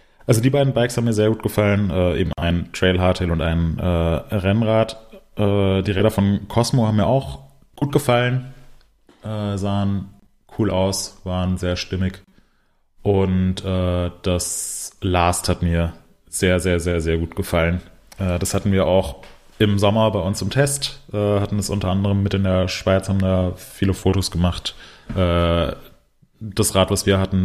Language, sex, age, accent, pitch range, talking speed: German, male, 20-39, German, 90-105 Hz, 170 wpm